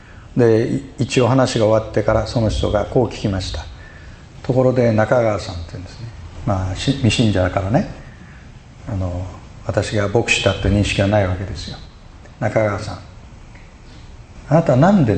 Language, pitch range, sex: Japanese, 95-125 Hz, male